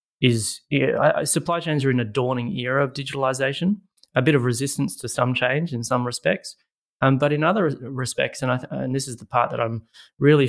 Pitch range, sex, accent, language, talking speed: 115-135 Hz, male, Australian, English, 200 wpm